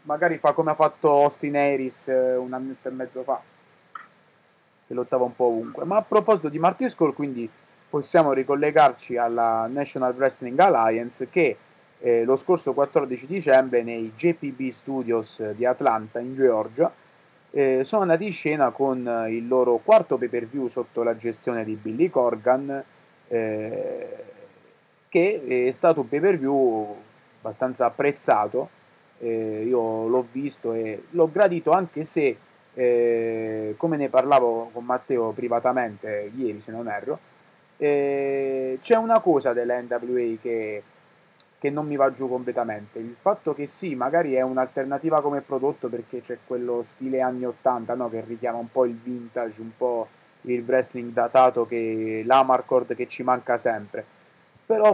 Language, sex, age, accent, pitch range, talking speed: Italian, male, 30-49, native, 120-145 Hz, 150 wpm